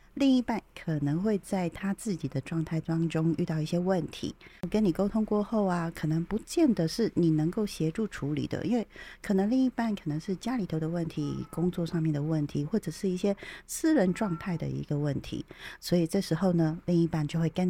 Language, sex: Chinese, female